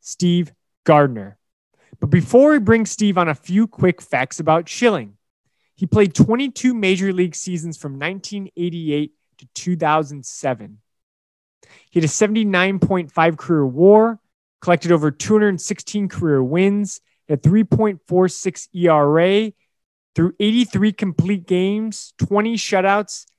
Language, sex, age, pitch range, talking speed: English, male, 20-39, 150-200 Hz, 110 wpm